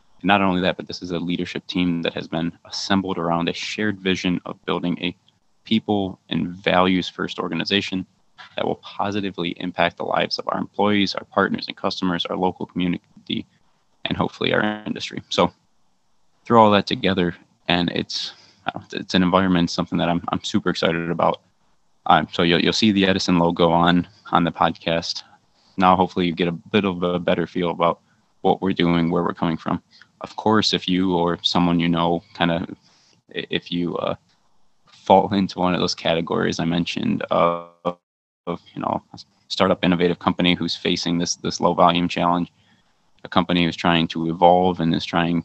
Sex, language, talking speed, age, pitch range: male, English, 180 wpm, 20-39, 85-95 Hz